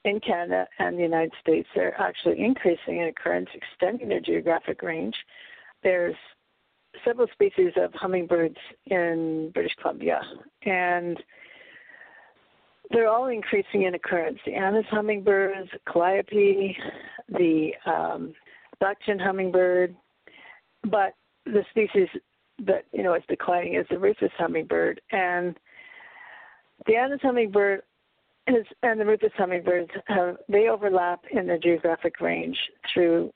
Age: 50-69